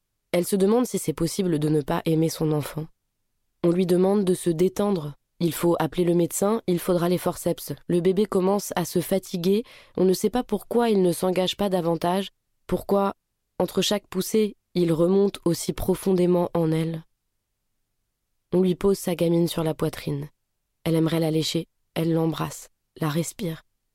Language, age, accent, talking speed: French, 20-39, French, 175 wpm